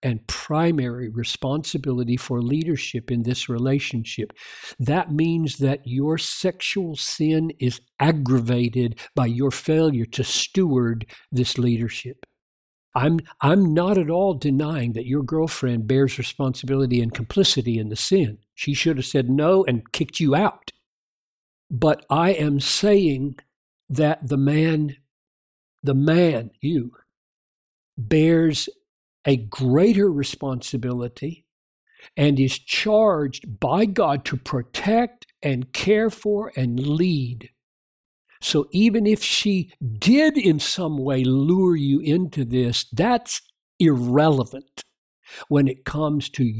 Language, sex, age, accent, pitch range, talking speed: English, male, 50-69, American, 125-165 Hz, 120 wpm